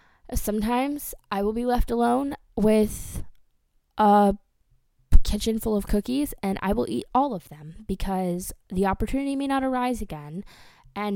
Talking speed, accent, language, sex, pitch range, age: 145 wpm, American, English, female, 170-220 Hz, 10-29